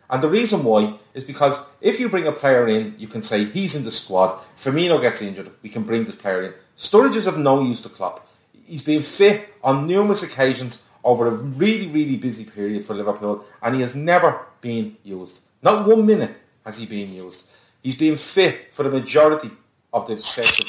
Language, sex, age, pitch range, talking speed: English, male, 30-49, 110-155 Hz, 205 wpm